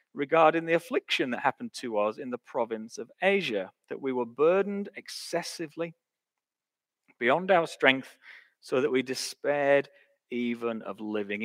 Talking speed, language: 140 wpm, English